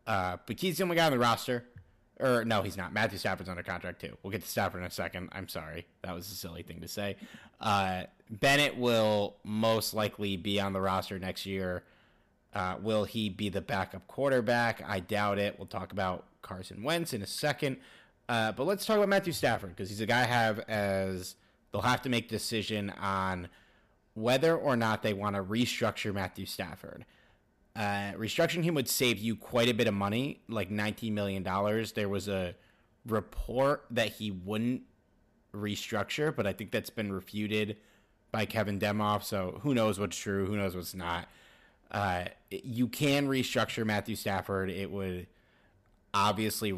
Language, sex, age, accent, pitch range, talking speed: English, male, 30-49, American, 95-115 Hz, 180 wpm